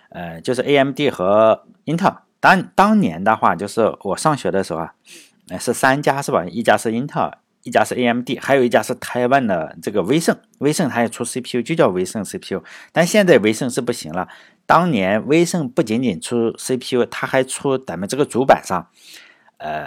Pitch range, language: 115-140 Hz, Chinese